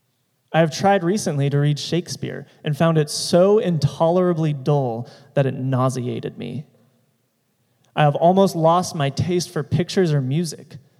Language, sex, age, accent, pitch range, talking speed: English, male, 20-39, American, 135-165 Hz, 145 wpm